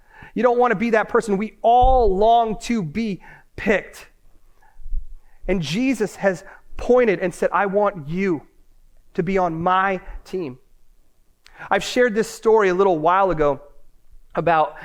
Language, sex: English, male